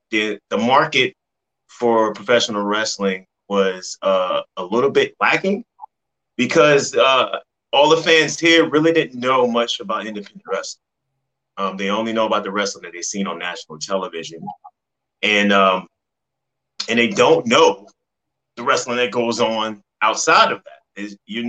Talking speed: 150 wpm